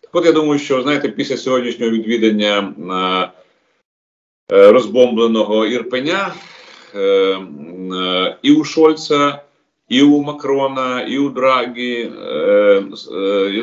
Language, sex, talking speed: Ukrainian, male, 90 wpm